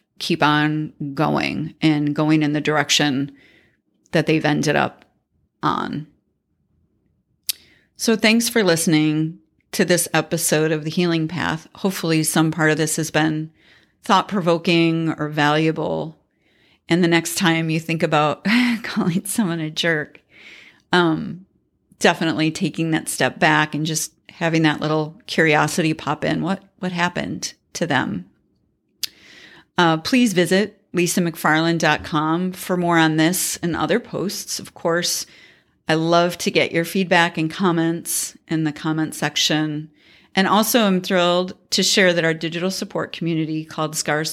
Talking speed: 140 wpm